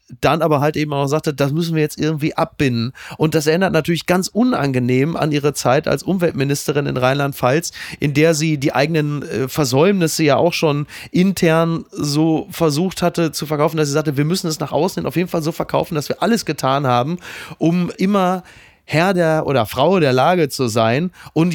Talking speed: 190 wpm